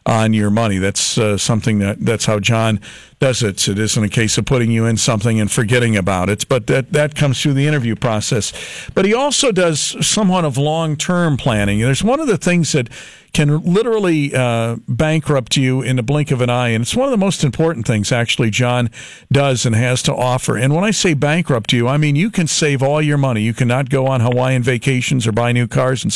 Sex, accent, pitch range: male, American, 120-155 Hz